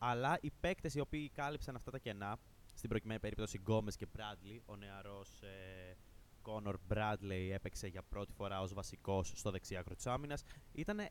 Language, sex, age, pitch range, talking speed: Greek, male, 20-39, 100-140 Hz, 160 wpm